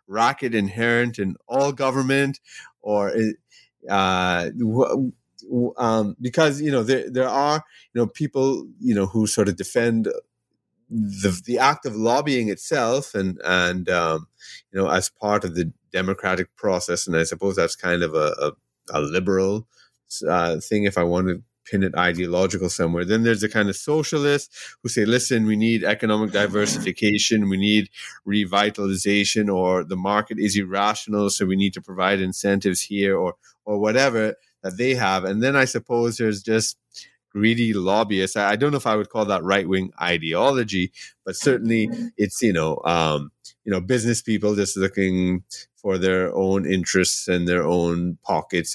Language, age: English, 30-49